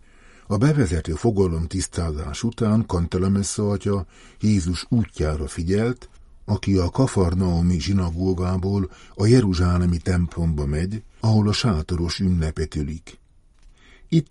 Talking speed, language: 100 wpm, Hungarian